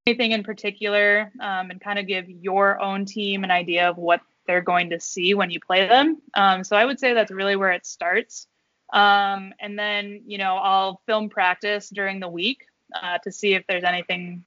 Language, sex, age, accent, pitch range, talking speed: English, female, 20-39, American, 185-215 Hz, 205 wpm